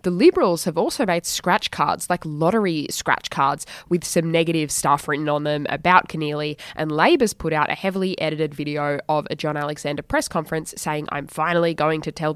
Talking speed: 195 wpm